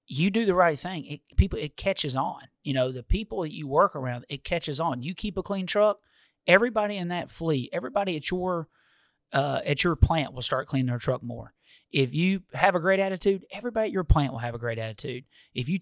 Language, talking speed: English, 230 wpm